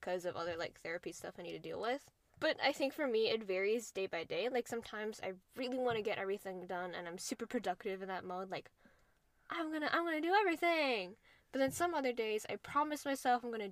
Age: 10-29